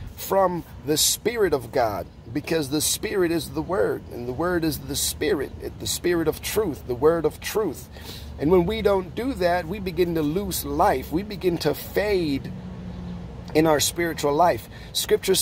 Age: 40-59